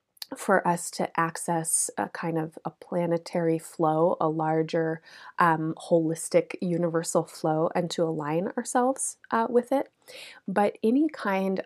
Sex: female